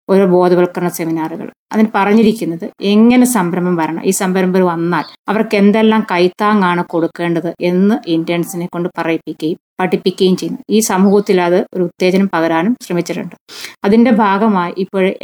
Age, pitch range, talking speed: 20-39, 175-210 Hz, 120 wpm